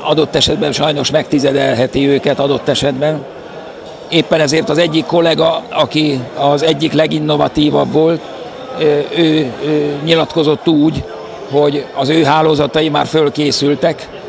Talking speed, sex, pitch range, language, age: 120 wpm, male, 145-160 Hz, Hungarian, 50-69